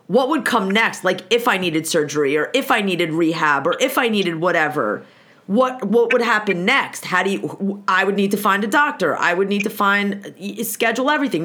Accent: American